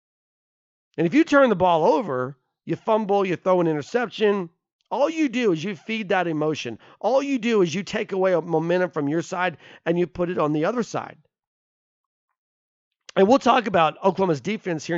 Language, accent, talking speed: English, American, 190 wpm